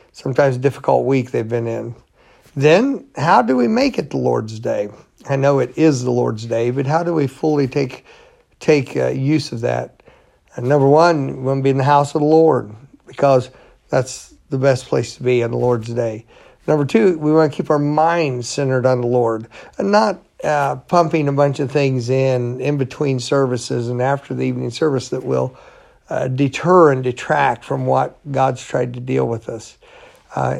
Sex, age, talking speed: male, 50-69, 200 wpm